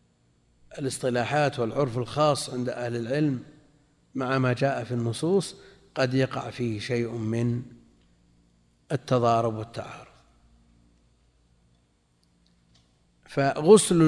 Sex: male